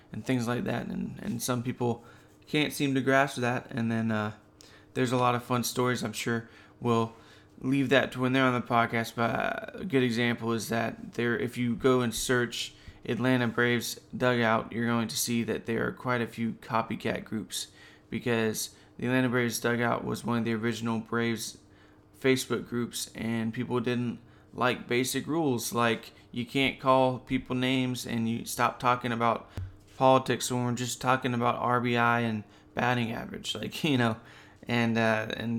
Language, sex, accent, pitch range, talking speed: English, male, American, 115-125 Hz, 180 wpm